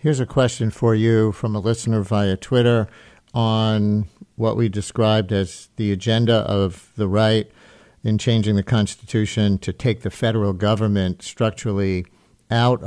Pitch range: 100-120 Hz